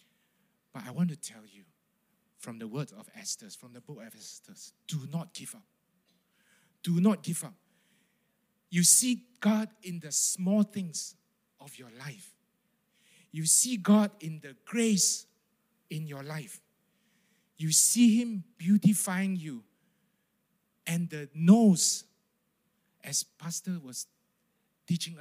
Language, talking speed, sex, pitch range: English, 130 wpm, male, 170-215 Hz